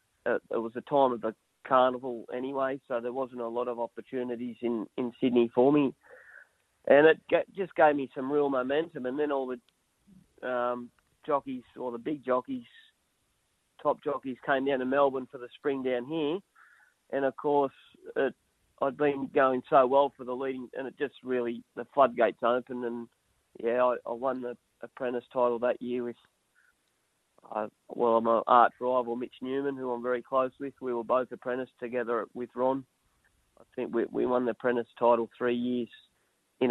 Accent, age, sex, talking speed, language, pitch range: Australian, 40-59, male, 185 wpm, English, 120-140 Hz